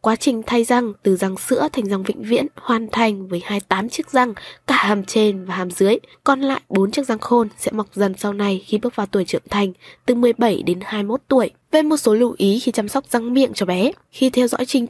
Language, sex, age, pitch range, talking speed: Vietnamese, female, 10-29, 200-250 Hz, 245 wpm